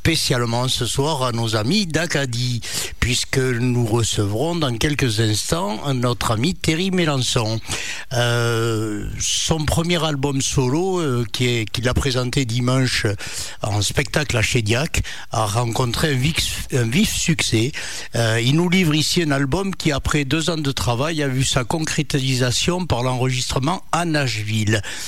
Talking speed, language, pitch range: 145 wpm, French, 115-150 Hz